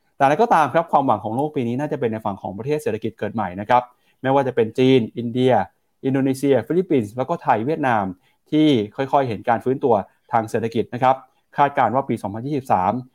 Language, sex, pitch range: Thai, male, 110-145 Hz